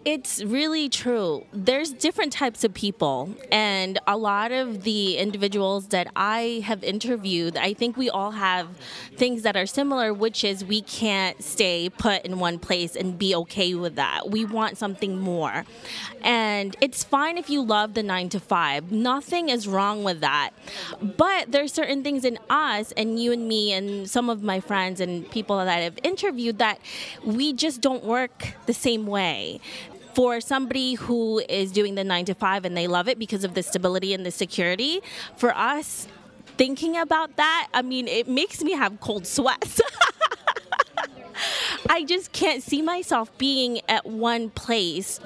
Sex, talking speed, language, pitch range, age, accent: female, 170 wpm, English, 190-250 Hz, 20-39, American